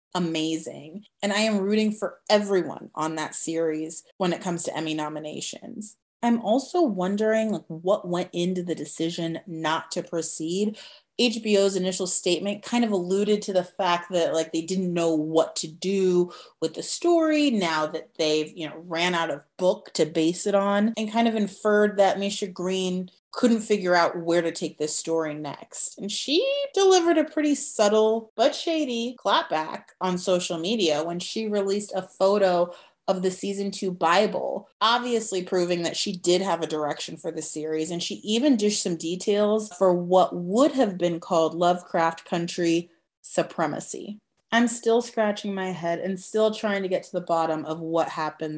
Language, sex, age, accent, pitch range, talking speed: English, female, 30-49, American, 165-210 Hz, 175 wpm